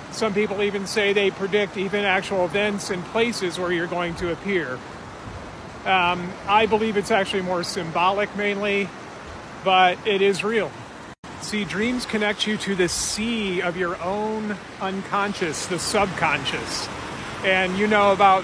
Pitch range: 175-205 Hz